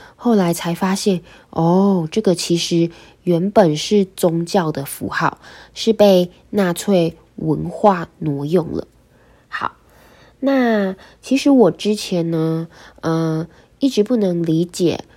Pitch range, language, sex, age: 165-205 Hz, Chinese, female, 10-29